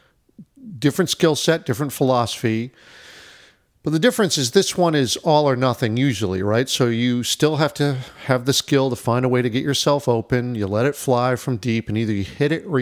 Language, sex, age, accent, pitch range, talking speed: English, male, 50-69, American, 115-145 Hz, 210 wpm